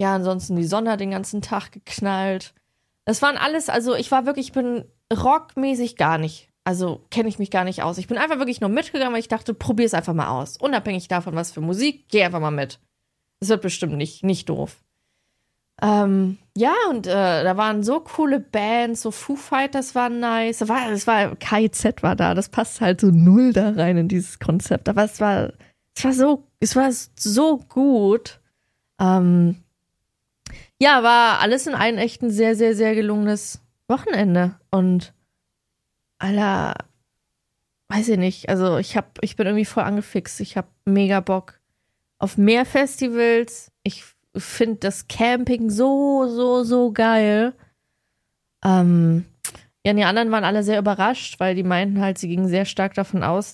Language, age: German, 20-39